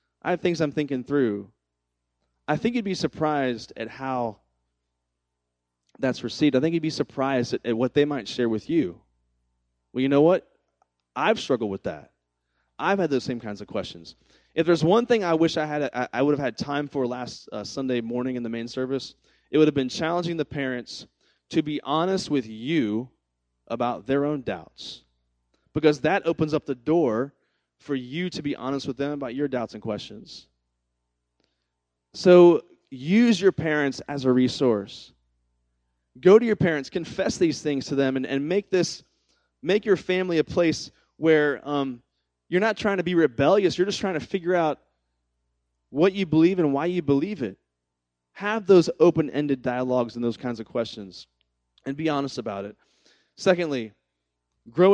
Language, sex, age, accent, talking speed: English, male, 30-49, American, 175 wpm